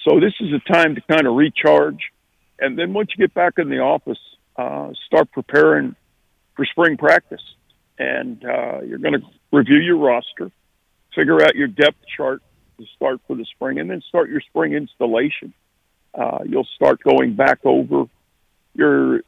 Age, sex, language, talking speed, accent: 50-69, male, English, 170 wpm, American